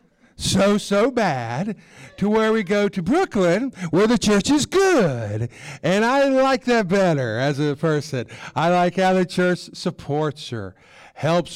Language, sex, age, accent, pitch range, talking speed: English, male, 50-69, American, 130-170 Hz, 155 wpm